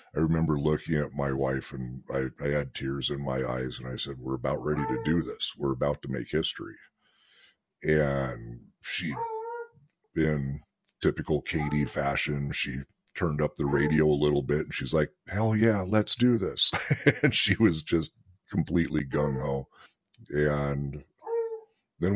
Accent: American